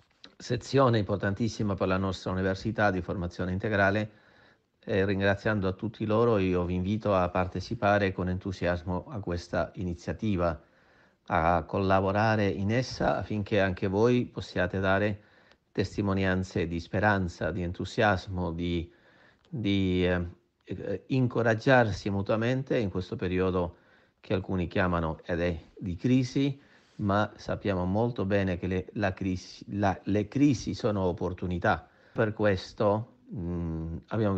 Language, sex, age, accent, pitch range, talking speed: Italian, male, 40-59, native, 90-105 Hz, 115 wpm